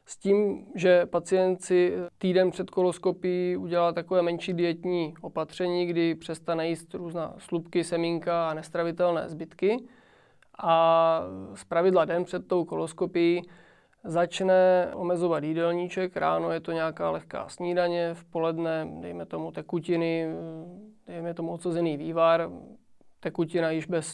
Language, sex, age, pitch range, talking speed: Czech, male, 20-39, 165-180 Hz, 125 wpm